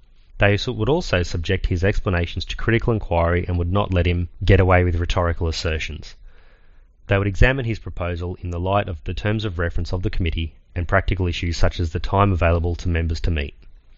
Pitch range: 85-100 Hz